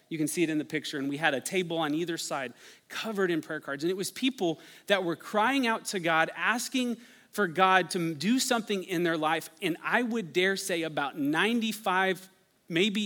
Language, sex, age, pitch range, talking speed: English, male, 30-49, 165-200 Hz, 210 wpm